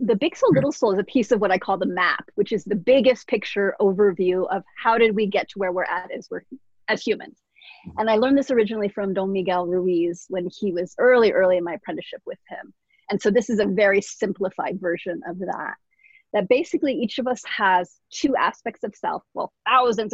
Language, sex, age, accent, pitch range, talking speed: English, female, 30-49, American, 200-255 Hz, 220 wpm